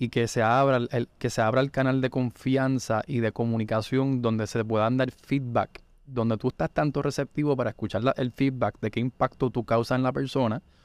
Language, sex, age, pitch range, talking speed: Spanish, male, 20-39, 115-140 Hz, 210 wpm